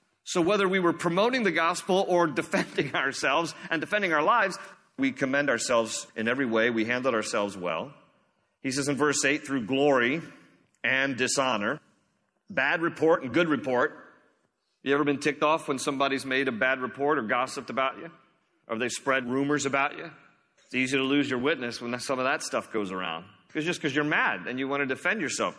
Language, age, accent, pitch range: English, 40-59, American, 120-170 Hz